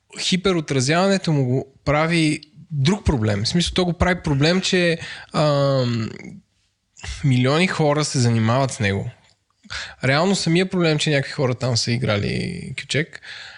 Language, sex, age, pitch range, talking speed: Bulgarian, male, 20-39, 120-150 Hz, 135 wpm